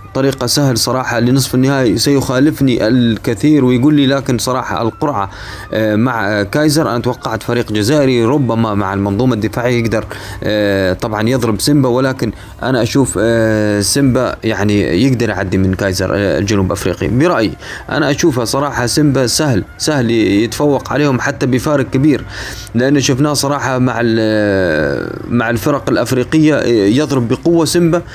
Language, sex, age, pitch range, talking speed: Arabic, male, 30-49, 115-150 Hz, 135 wpm